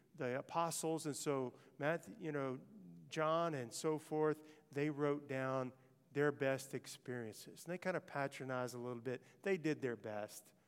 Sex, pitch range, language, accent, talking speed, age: male, 125-160 Hz, English, American, 165 wpm, 50-69